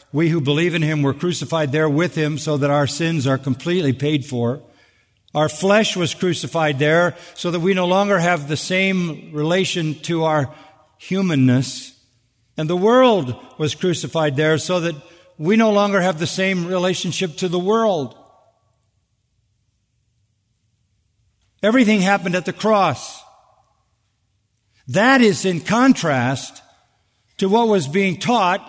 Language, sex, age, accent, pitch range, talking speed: English, male, 50-69, American, 140-185 Hz, 140 wpm